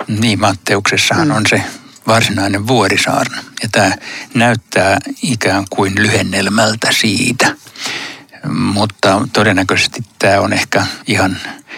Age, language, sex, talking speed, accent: 60-79, Finnish, male, 95 wpm, native